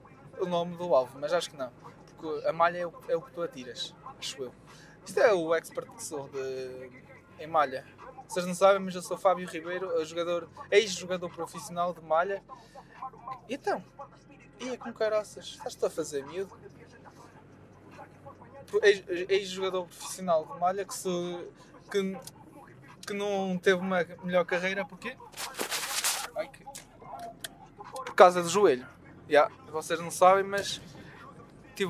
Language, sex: Portuguese, male